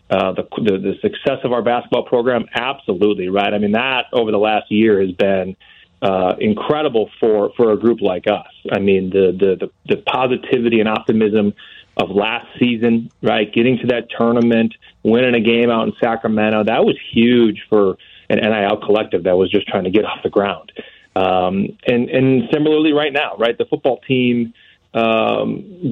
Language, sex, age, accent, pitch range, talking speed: English, male, 30-49, American, 110-130 Hz, 180 wpm